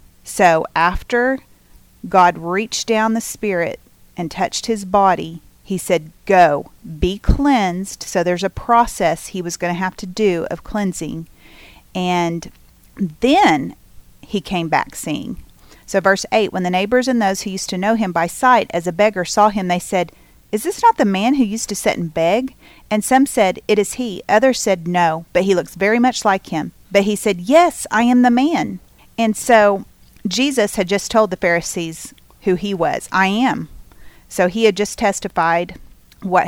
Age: 40-59